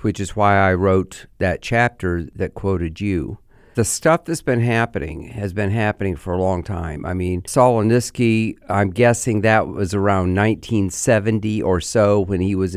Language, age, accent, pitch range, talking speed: English, 50-69, American, 95-115 Hz, 170 wpm